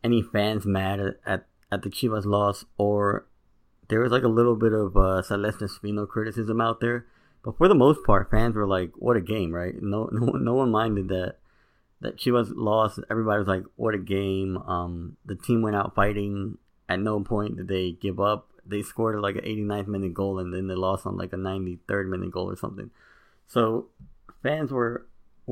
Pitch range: 95-115 Hz